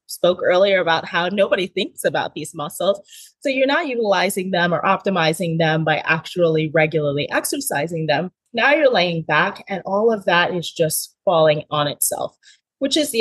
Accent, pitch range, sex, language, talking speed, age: American, 165-235 Hz, female, English, 175 wpm, 20-39